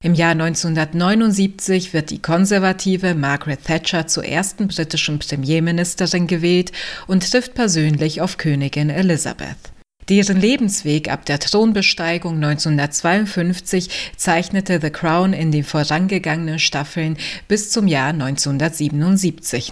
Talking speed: 110 wpm